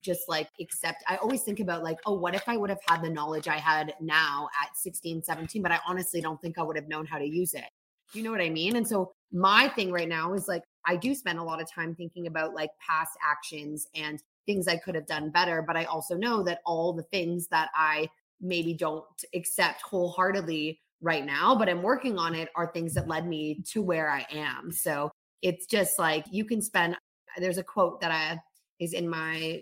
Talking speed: 230 wpm